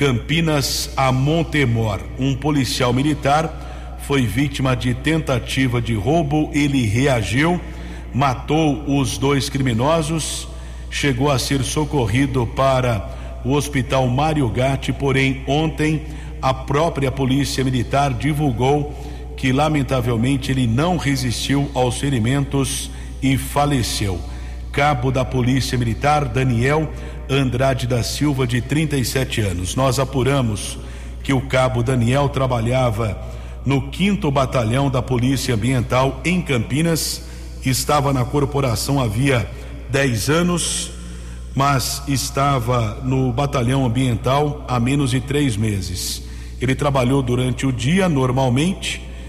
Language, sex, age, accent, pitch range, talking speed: Portuguese, male, 60-79, Brazilian, 120-140 Hz, 110 wpm